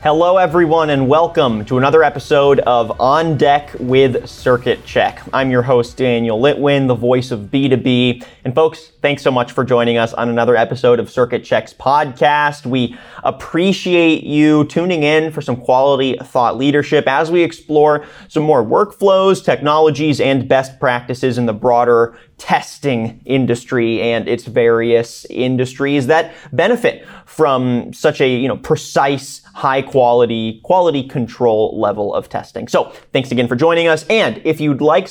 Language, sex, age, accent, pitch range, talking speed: English, male, 30-49, American, 125-160 Hz, 155 wpm